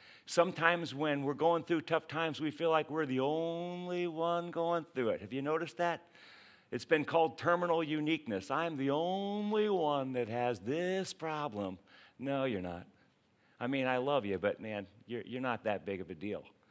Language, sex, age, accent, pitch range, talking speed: English, male, 50-69, American, 115-160 Hz, 185 wpm